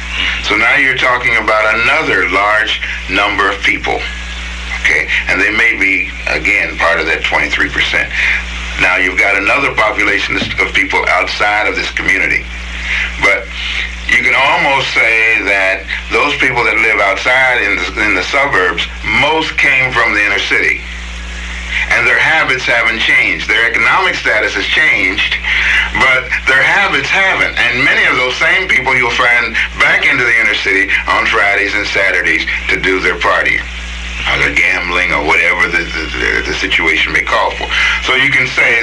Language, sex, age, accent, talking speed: English, male, 60-79, American, 160 wpm